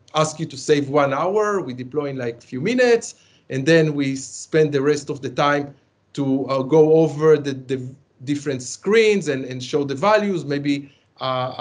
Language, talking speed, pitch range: English, 190 wpm, 130-170 Hz